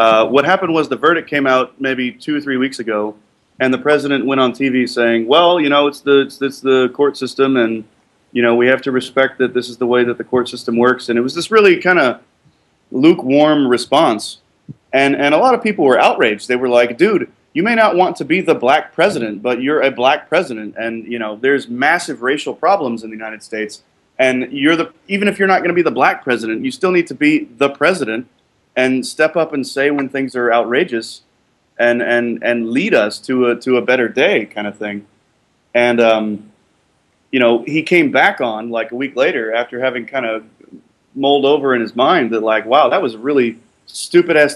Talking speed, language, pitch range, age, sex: 225 wpm, English, 120-145 Hz, 30-49, male